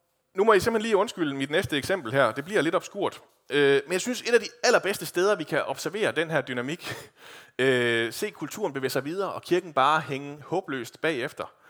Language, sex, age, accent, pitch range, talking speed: Danish, male, 30-49, native, 120-165 Hz, 205 wpm